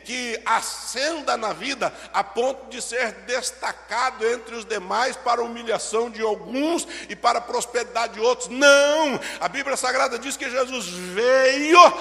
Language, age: Portuguese, 60-79